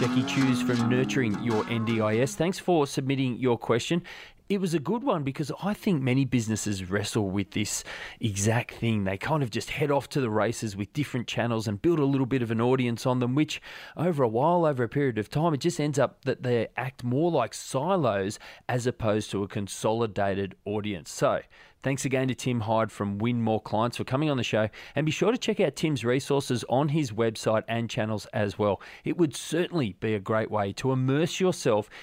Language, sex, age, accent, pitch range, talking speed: English, male, 30-49, Australian, 110-140 Hz, 210 wpm